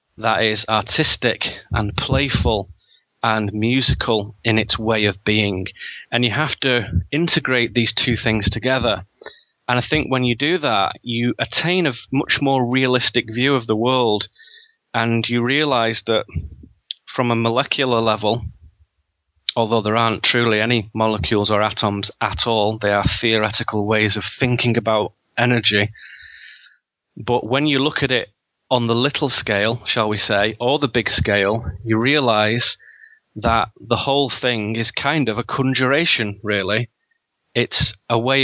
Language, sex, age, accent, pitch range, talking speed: English, male, 30-49, British, 105-125 Hz, 150 wpm